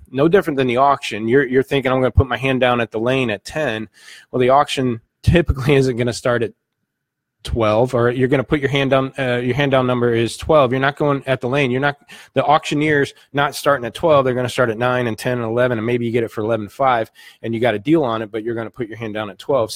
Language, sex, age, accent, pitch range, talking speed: English, male, 20-39, American, 115-135 Hz, 285 wpm